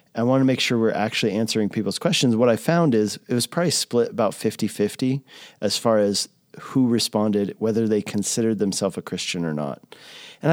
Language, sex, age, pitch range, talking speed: English, male, 40-59, 95-125 Hz, 195 wpm